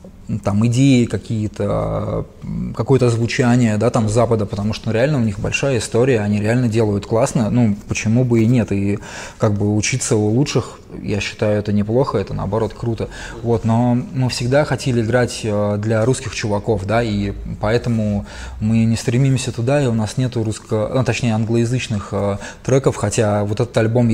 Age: 20-39